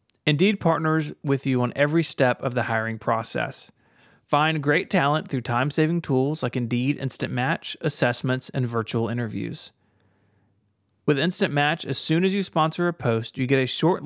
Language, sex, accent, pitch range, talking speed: English, male, American, 120-150 Hz, 165 wpm